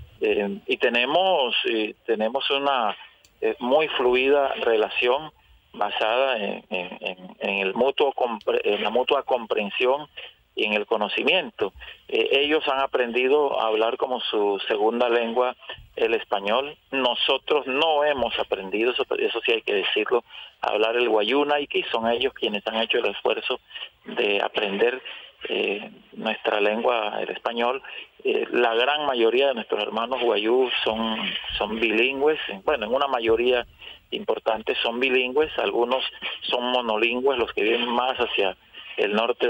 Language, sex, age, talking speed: Spanish, male, 40-59, 145 wpm